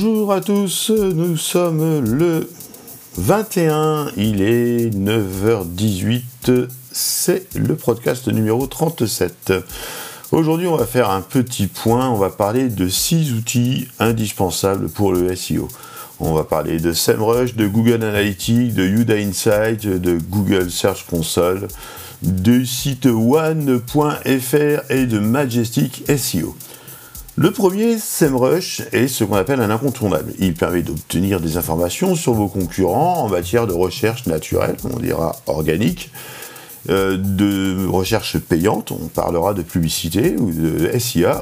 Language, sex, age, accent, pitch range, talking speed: French, male, 50-69, French, 95-145 Hz, 130 wpm